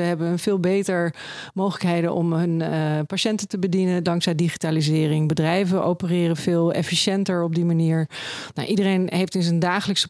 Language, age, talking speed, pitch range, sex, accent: Dutch, 40-59, 160 wpm, 170-205 Hz, female, Dutch